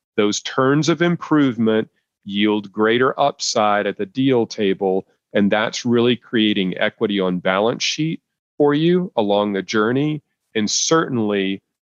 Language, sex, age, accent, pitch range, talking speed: English, male, 40-59, American, 105-125 Hz, 130 wpm